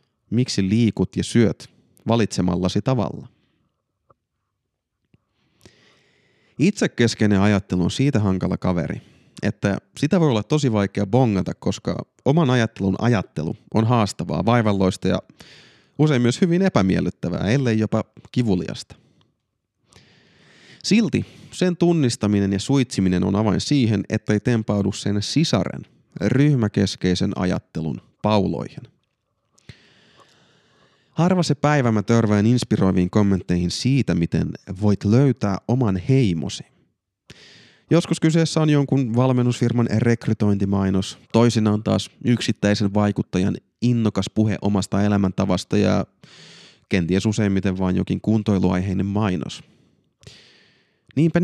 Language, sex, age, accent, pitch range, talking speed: Finnish, male, 30-49, native, 100-125 Hz, 100 wpm